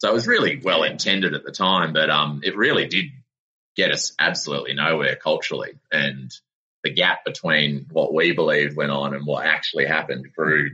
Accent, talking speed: Australian, 185 wpm